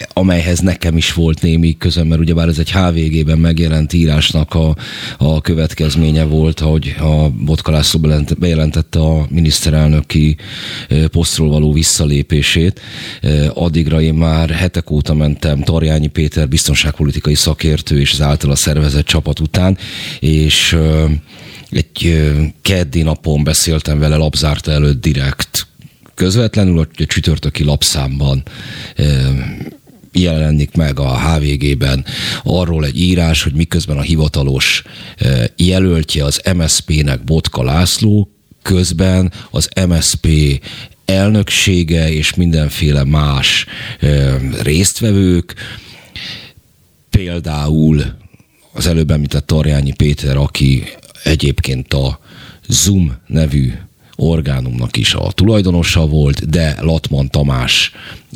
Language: Hungarian